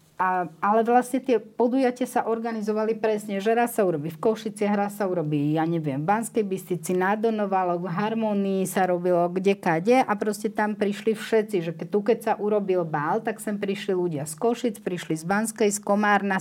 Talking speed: 185 wpm